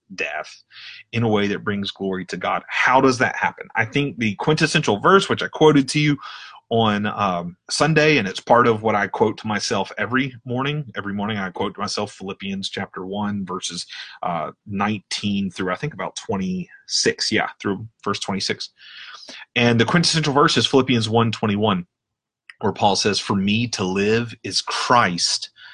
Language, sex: English, male